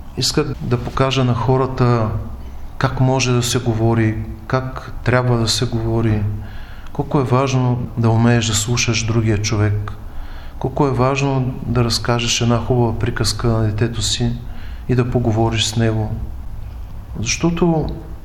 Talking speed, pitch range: 135 wpm, 105-125 Hz